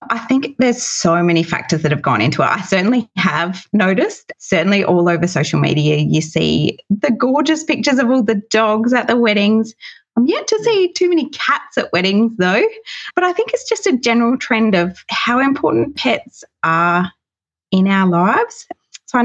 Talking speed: 185 wpm